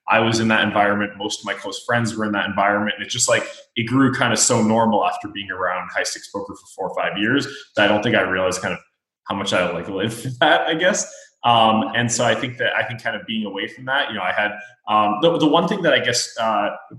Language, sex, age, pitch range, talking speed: English, male, 20-39, 110-135 Hz, 275 wpm